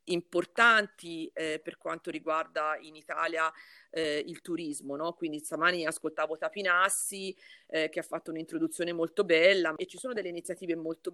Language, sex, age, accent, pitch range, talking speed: Italian, female, 40-59, native, 165-220 Hz, 145 wpm